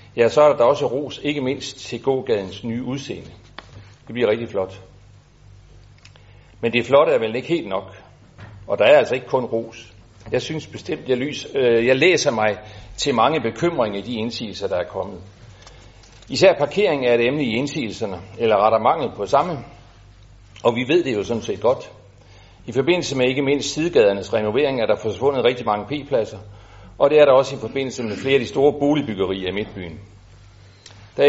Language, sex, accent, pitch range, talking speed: Danish, male, native, 100-130 Hz, 190 wpm